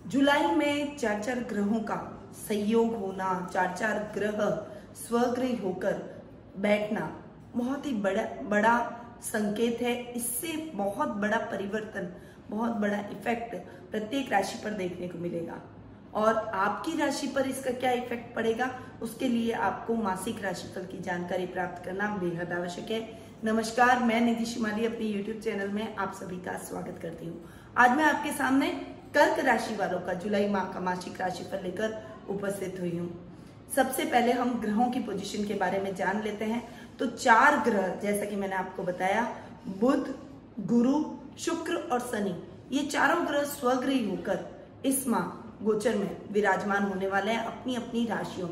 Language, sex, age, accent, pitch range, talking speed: Hindi, female, 20-39, native, 195-255 Hz, 155 wpm